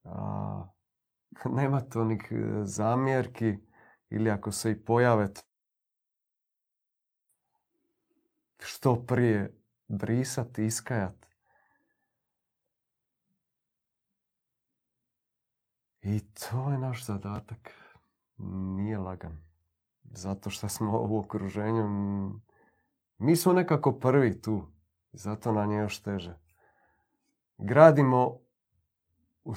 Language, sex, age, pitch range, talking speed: Croatian, male, 40-59, 100-125 Hz, 75 wpm